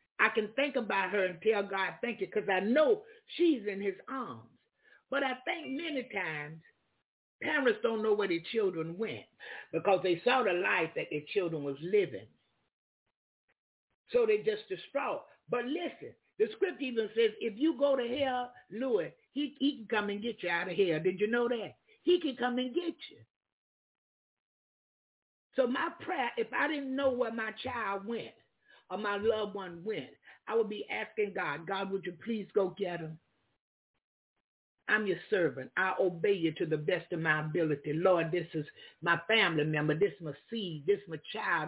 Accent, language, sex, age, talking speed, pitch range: American, English, male, 50-69, 185 wpm, 185-260 Hz